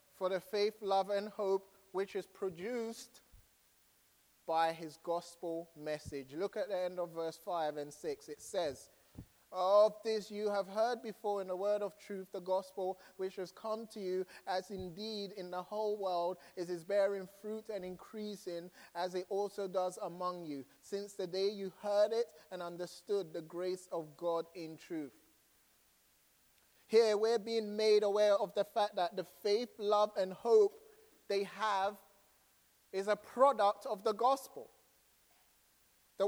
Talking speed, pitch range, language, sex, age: 160 wpm, 185-235 Hz, English, male, 30-49